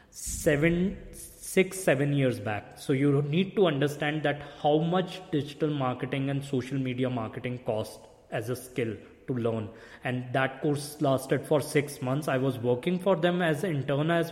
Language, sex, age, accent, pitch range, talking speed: English, male, 20-39, Indian, 130-150 Hz, 170 wpm